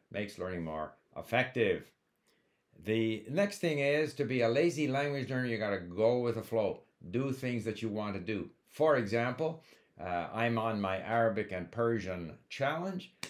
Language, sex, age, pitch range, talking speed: English, male, 60-79, 100-140 Hz, 170 wpm